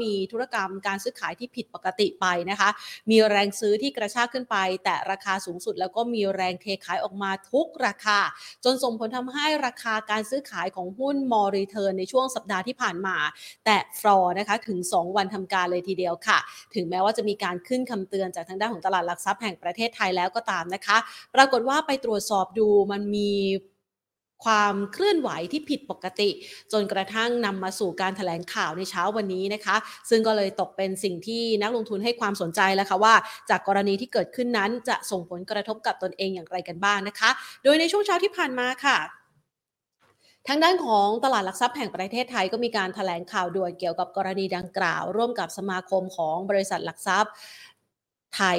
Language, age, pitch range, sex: Thai, 30-49, 190-230 Hz, female